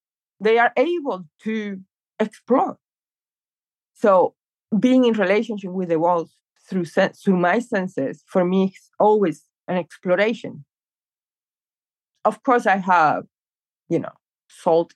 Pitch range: 165-220 Hz